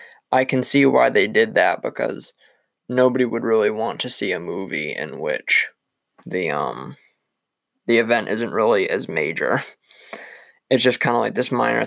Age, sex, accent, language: 20-39, male, American, English